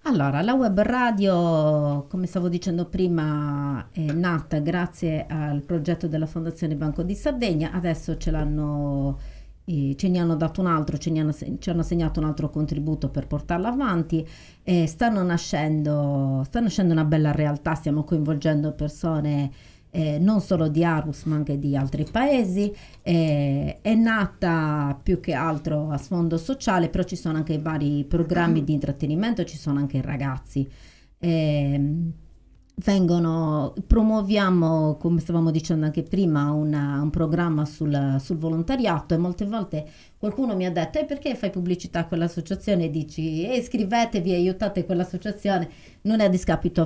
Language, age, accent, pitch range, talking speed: Italian, 40-59, native, 150-185 Hz, 150 wpm